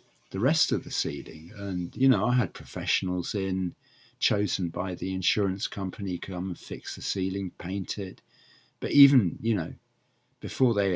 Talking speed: 165 wpm